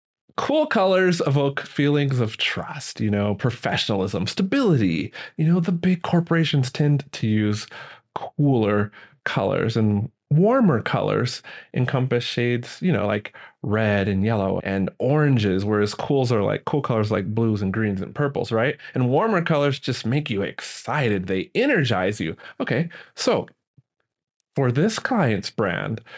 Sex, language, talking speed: male, English, 135 wpm